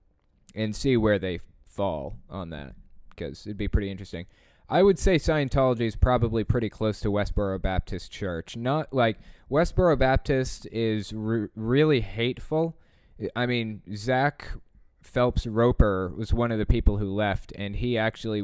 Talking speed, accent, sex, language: 150 wpm, American, male, English